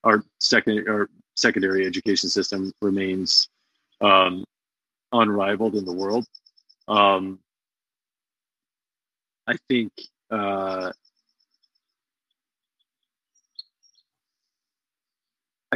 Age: 40-59